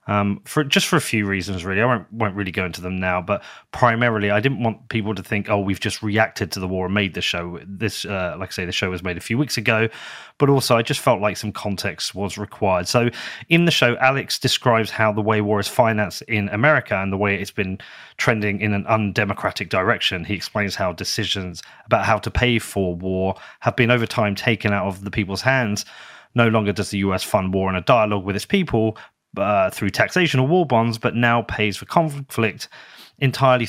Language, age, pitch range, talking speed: English, 30-49, 100-125 Hz, 225 wpm